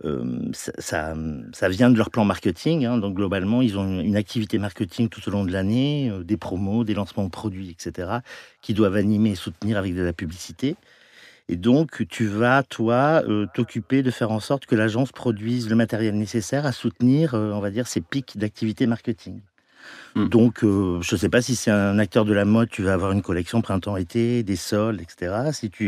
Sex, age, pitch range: male, 50-69, 95-115 Hz